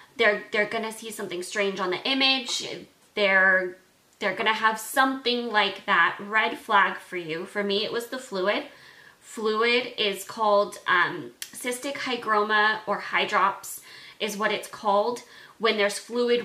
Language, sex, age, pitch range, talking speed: English, female, 20-39, 195-240 Hz, 155 wpm